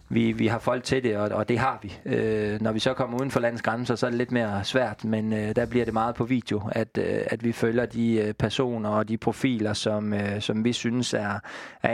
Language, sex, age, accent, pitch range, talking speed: Danish, male, 20-39, native, 110-125 Hz, 260 wpm